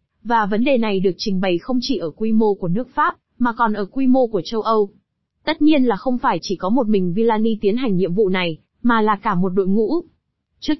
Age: 20-39